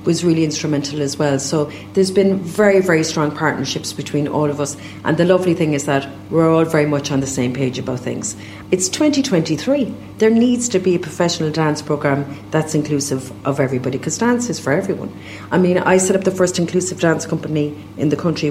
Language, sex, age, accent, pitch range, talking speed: English, female, 40-59, Irish, 135-165 Hz, 205 wpm